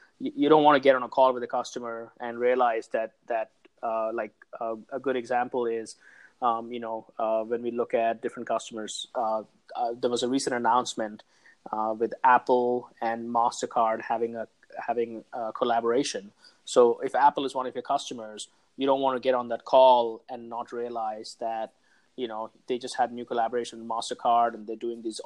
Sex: male